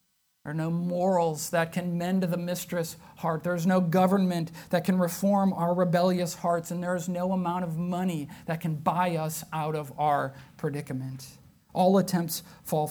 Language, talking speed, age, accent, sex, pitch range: English, 175 wpm, 40-59, American, male, 170-220 Hz